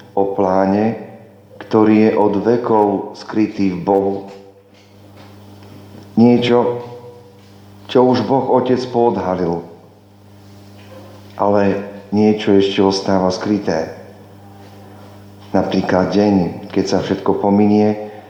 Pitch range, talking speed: 100-105 Hz, 85 wpm